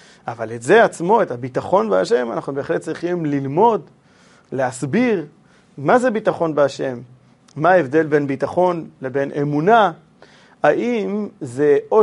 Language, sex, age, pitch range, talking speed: Hebrew, male, 40-59, 140-200 Hz, 125 wpm